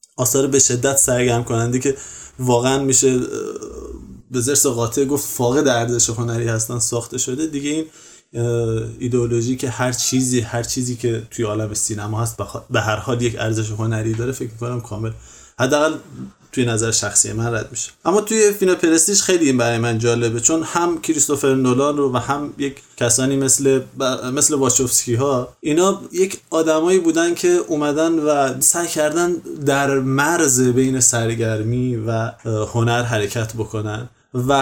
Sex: male